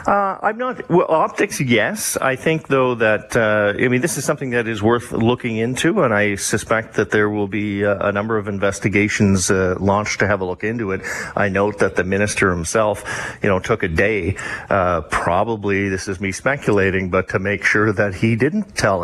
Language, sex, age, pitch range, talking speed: English, male, 40-59, 100-115 Hz, 210 wpm